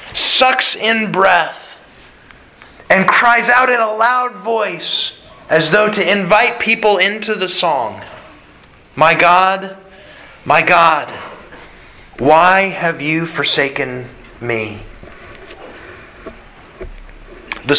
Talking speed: 95 wpm